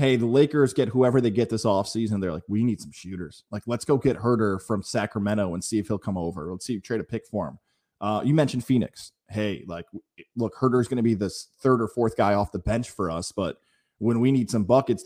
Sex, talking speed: male, 250 wpm